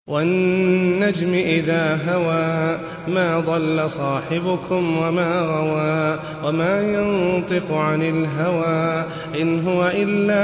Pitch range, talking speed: 160-205 Hz, 85 wpm